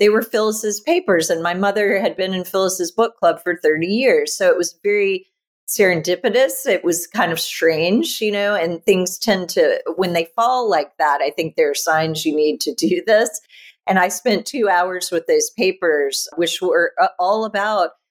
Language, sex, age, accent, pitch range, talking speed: English, female, 40-59, American, 165-225 Hz, 195 wpm